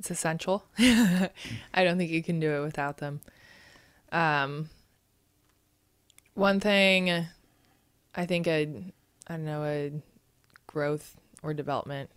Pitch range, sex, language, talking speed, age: 145-170 Hz, female, English, 115 wpm, 20-39